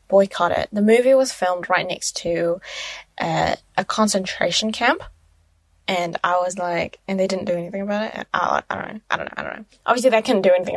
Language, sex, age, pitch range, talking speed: English, female, 10-29, 185-230 Hz, 215 wpm